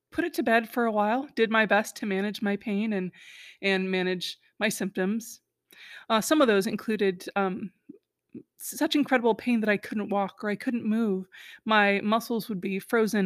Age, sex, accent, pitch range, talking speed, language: 20-39, female, American, 200-275 Hz, 185 wpm, English